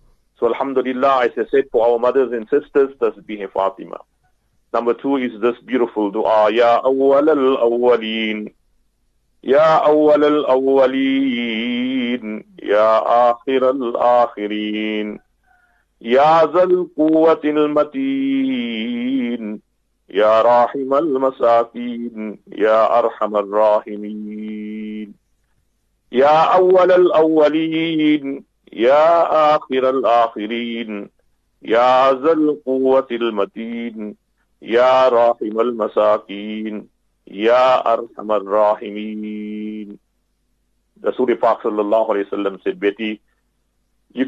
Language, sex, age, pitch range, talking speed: English, male, 50-69, 110-150 Hz, 90 wpm